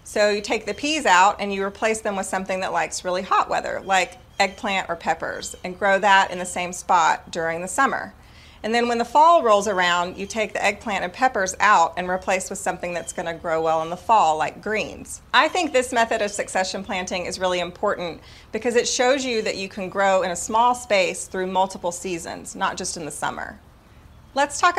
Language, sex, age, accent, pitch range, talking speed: English, female, 30-49, American, 180-225 Hz, 220 wpm